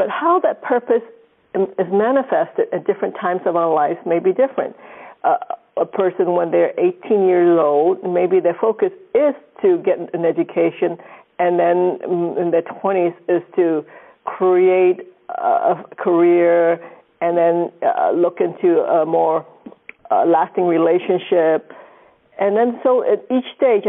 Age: 50-69